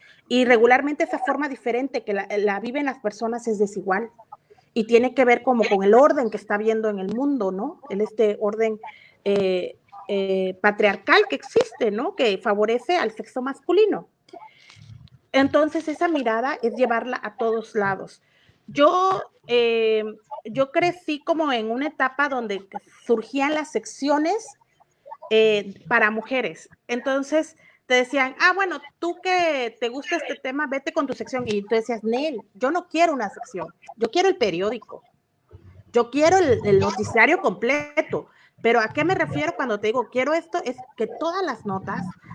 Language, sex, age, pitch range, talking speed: Spanish, female, 40-59, 220-305 Hz, 160 wpm